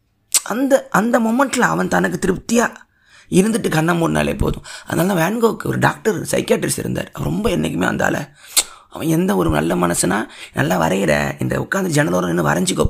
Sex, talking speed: male, 155 wpm